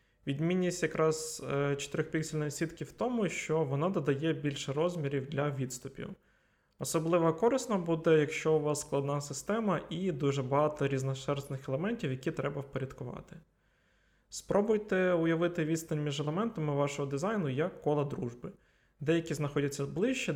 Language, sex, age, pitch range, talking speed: Ukrainian, male, 20-39, 140-175 Hz, 125 wpm